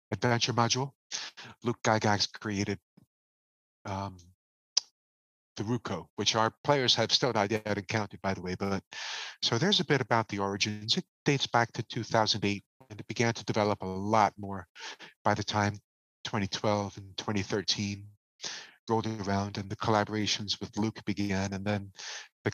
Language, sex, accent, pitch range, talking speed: English, male, American, 100-115 Hz, 150 wpm